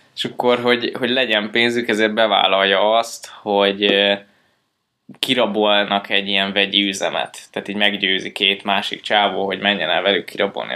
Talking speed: 140 wpm